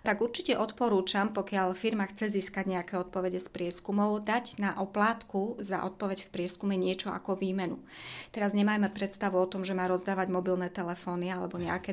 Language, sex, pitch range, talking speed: Slovak, female, 185-215 Hz, 165 wpm